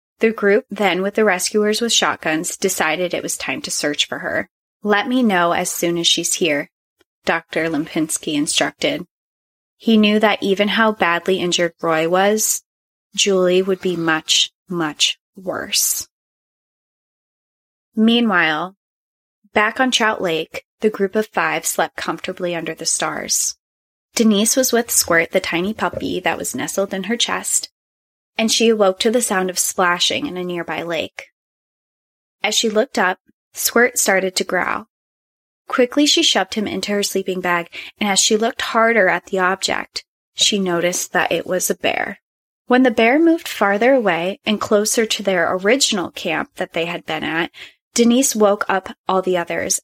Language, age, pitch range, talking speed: English, 20-39, 180-225 Hz, 165 wpm